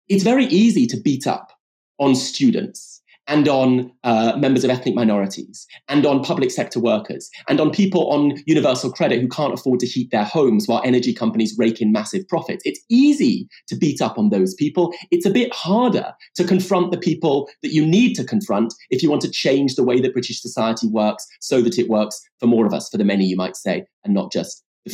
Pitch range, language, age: 125-200 Hz, English, 30-49